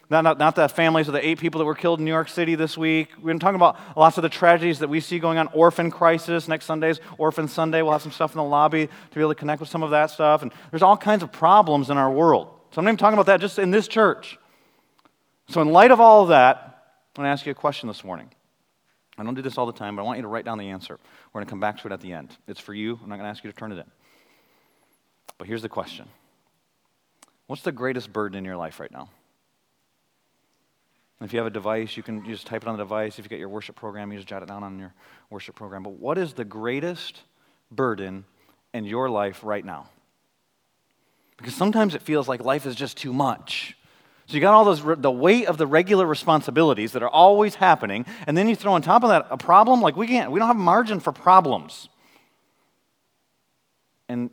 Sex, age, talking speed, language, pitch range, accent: male, 30-49, 245 wpm, English, 115-165 Hz, American